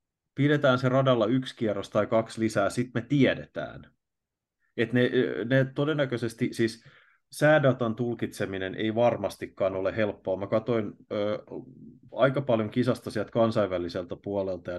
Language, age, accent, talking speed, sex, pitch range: Finnish, 30-49, native, 125 wpm, male, 100-120 Hz